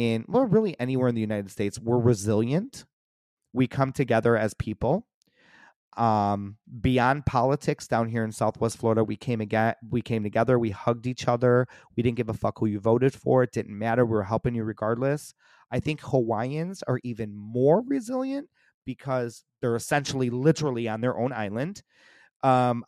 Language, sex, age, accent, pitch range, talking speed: English, male, 30-49, American, 110-140 Hz, 175 wpm